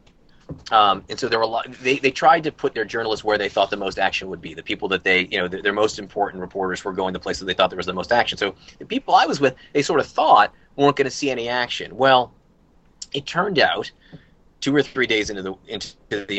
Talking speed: 265 wpm